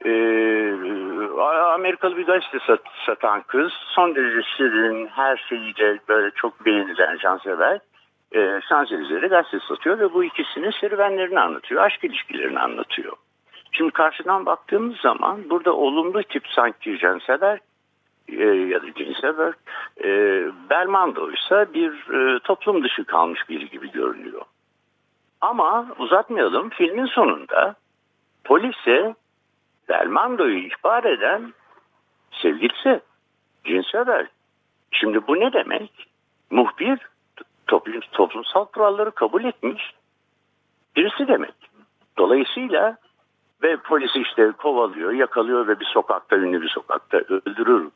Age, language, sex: 60-79, Turkish, male